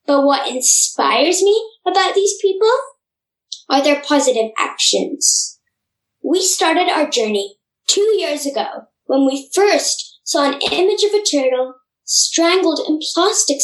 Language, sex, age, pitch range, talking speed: English, female, 10-29, 280-390 Hz, 130 wpm